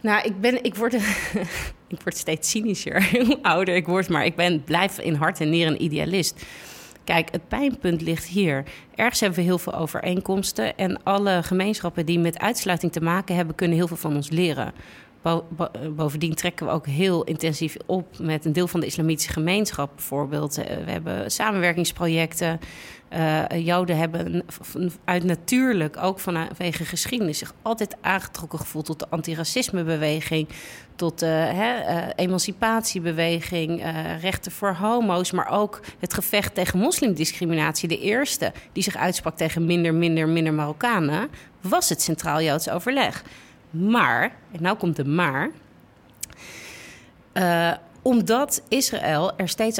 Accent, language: Dutch, Dutch